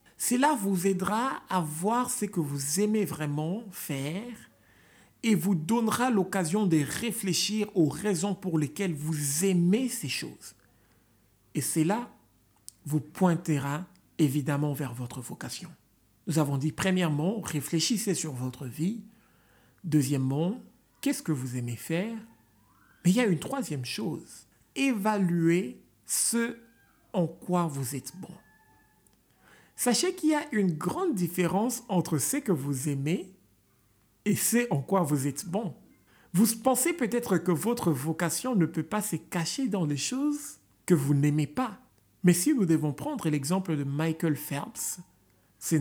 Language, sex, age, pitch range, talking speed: French, male, 50-69, 150-210 Hz, 140 wpm